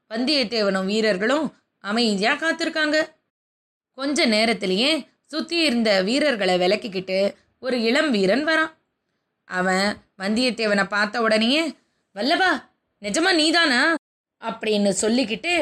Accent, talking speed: native, 90 wpm